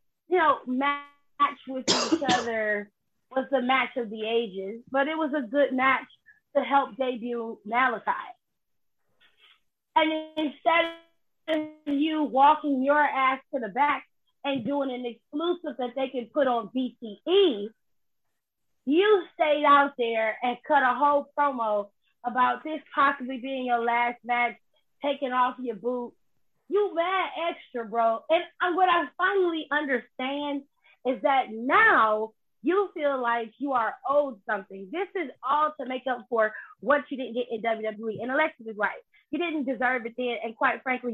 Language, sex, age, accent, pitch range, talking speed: English, female, 20-39, American, 235-300 Hz, 155 wpm